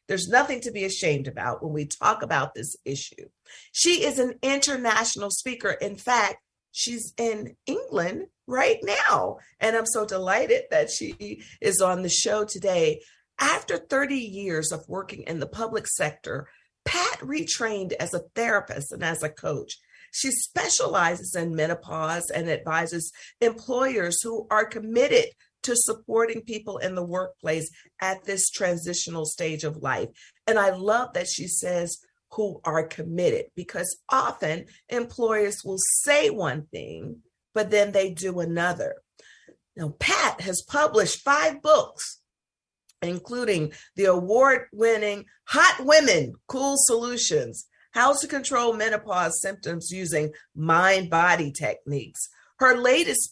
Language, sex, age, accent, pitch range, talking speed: English, female, 50-69, American, 170-245 Hz, 135 wpm